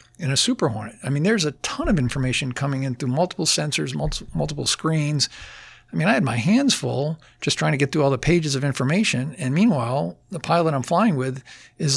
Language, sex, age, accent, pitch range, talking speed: English, male, 50-69, American, 130-160 Hz, 220 wpm